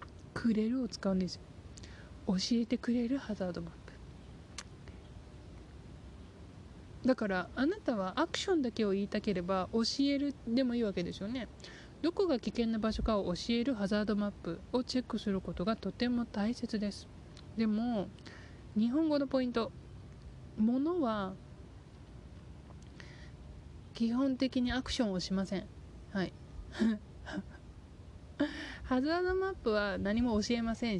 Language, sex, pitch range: Japanese, male, 180-250 Hz